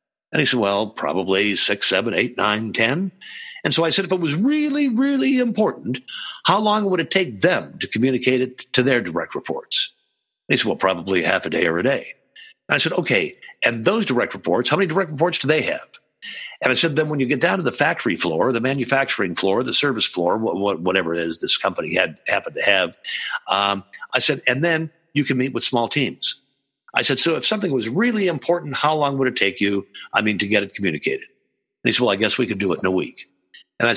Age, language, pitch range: 60-79, English, 110-170 Hz